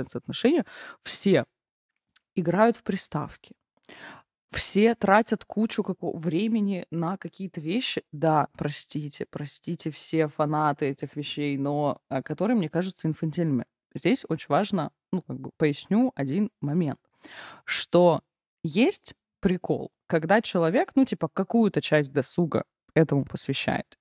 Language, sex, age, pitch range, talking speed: Russian, female, 20-39, 150-200 Hz, 115 wpm